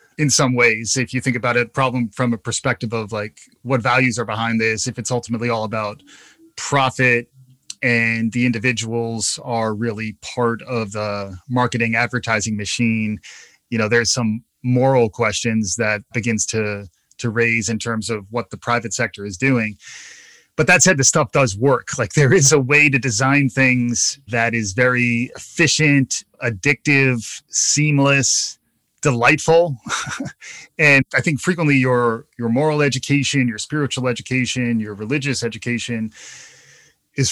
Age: 30-49